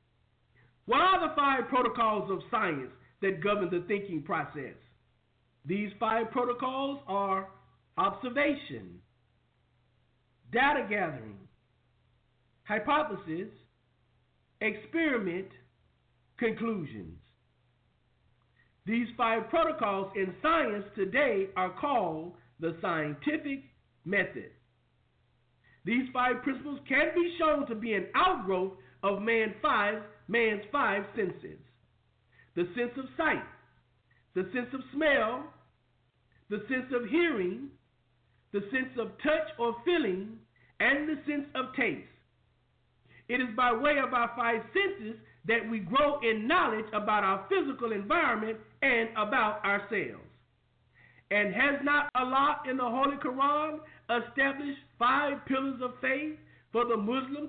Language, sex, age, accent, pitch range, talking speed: English, male, 50-69, American, 195-280 Hz, 115 wpm